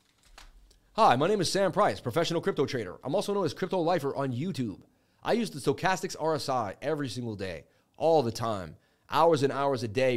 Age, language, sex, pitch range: 30-49, English, male, 115-155 Hz